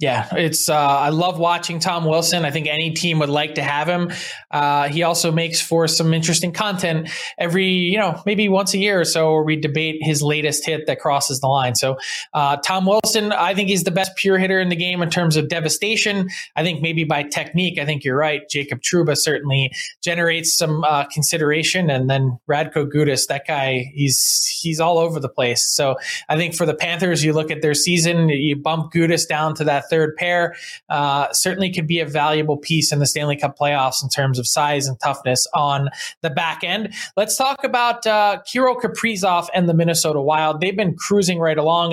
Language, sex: English, male